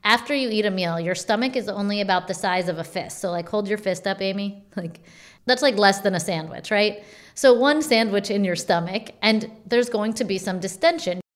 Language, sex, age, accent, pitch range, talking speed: English, female, 30-49, American, 190-220 Hz, 225 wpm